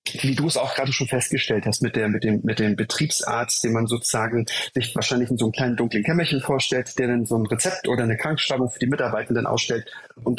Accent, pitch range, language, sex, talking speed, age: German, 115-135 Hz, German, male, 230 wpm, 30-49